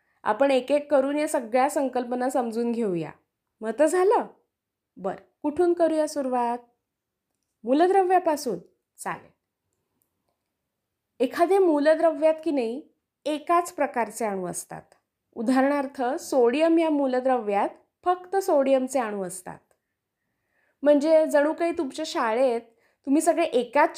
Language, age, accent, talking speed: English, 20-39, Indian, 105 wpm